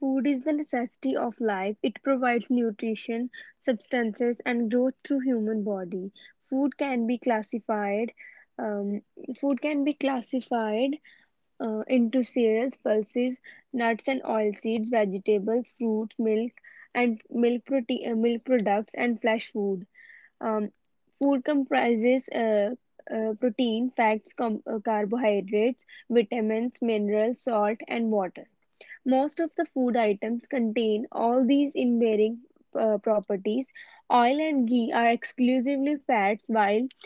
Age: 10-29